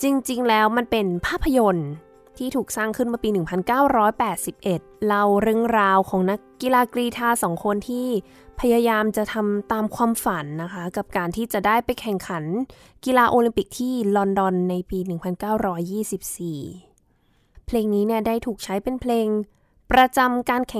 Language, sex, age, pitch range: Thai, female, 20-39, 185-240 Hz